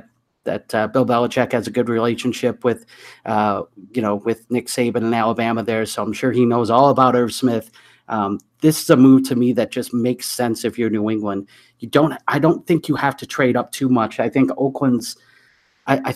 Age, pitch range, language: 30-49, 115-135 Hz, English